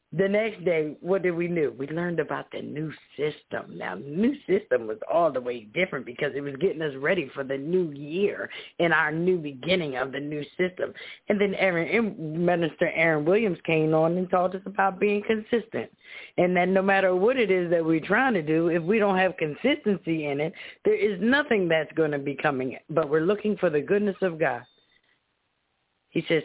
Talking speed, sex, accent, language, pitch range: 205 wpm, female, American, English, 150-200 Hz